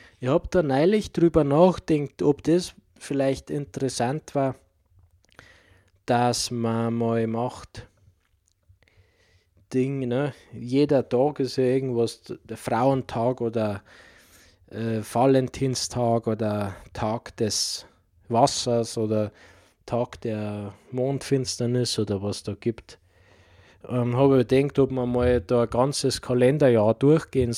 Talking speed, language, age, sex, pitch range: 110 wpm, German, 20-39, male, 95-130 Hz